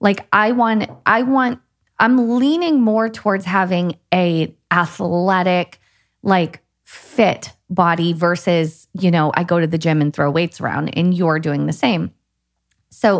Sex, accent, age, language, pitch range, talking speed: female, American, 30-49, English, 160-195 Hz, 150 wpm